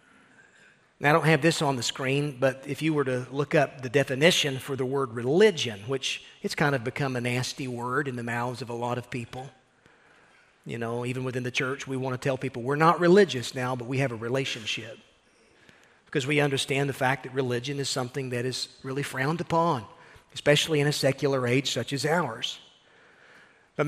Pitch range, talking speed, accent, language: 130-165 Hz, 200 wpm, American, English